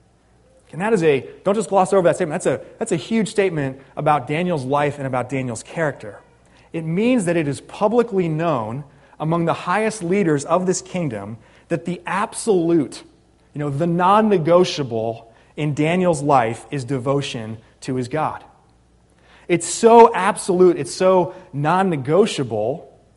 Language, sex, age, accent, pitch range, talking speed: English, male, 30-49, American, 125-175 Hz, 150 wpm